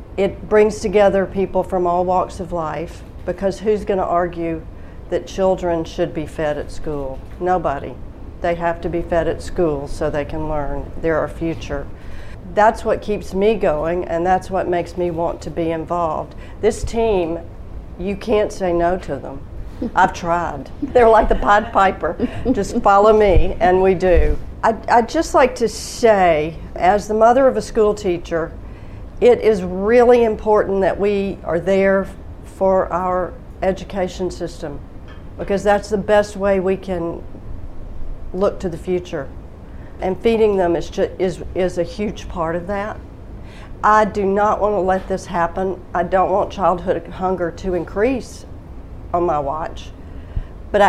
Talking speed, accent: 160 wpm, American